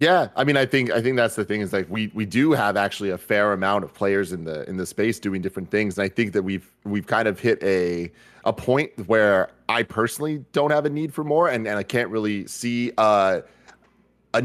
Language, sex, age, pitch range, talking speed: English, male, 30-49, 95-125 Hz, 245 wpm